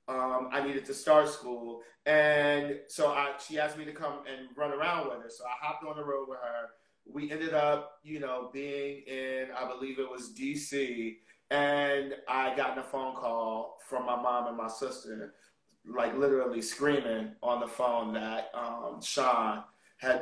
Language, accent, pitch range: English, American, 125-145 Hz